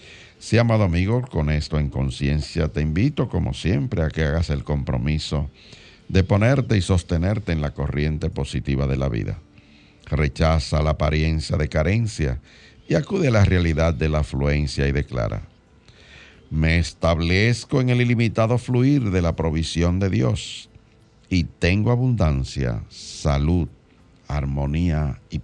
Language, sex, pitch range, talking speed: Spanish, male, 75-110 Hz, 140 wpm